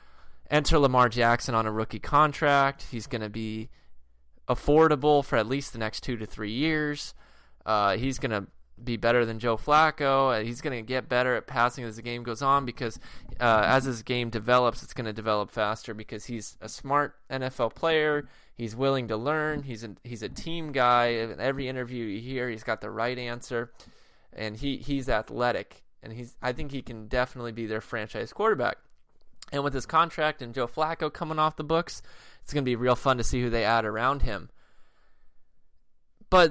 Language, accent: English, American